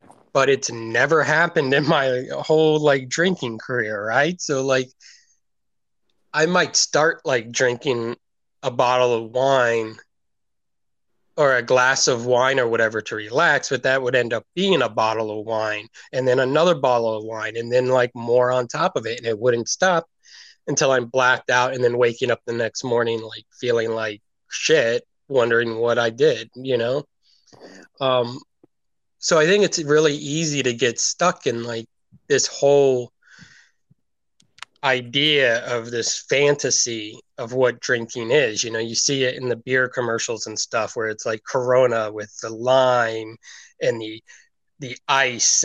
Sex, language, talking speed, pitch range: male, English, 165 wpm, 115-130 Hz